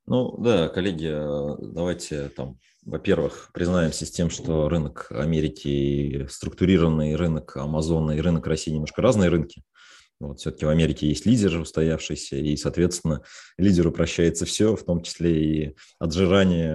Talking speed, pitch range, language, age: 135 wpm, 80-95 Hz, Russian, 30-49